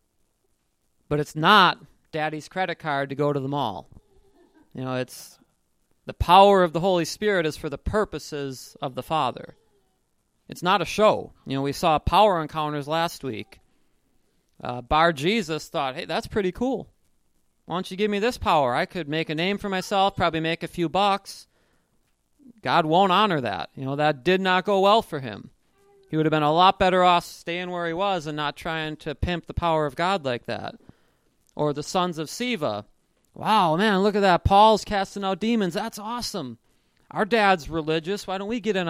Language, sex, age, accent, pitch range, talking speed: English, male, 30-49, American, 150-195 Hz, 195 wpm